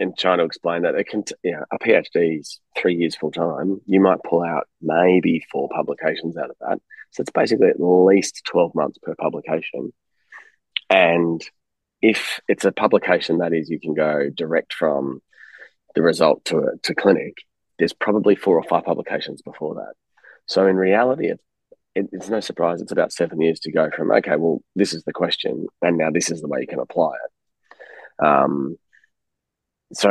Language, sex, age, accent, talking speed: English, male, 20-39, Australian, 185 wpm